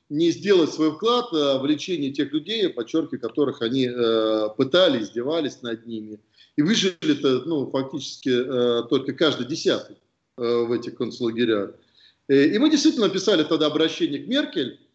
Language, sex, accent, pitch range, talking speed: Russian, male, native, 125-175 Hz, 135 wpm